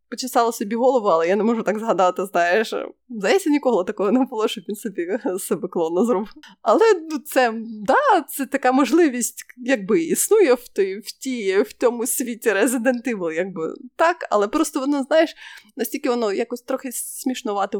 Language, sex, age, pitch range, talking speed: Ukrainian, female, 20-39, 195-270 Hz, 165 wpm